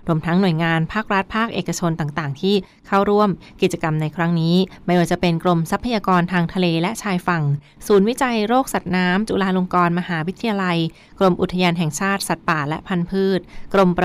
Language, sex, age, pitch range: Thai, female, 20-39, 170-200 Hz